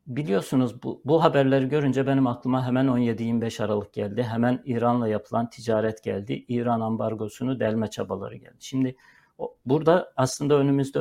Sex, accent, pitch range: male, native, 115-135 Hz